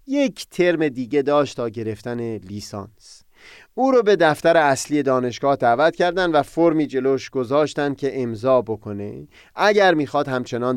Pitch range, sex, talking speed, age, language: 125-205 Hz, male, 140 wpm, 30-49, Persian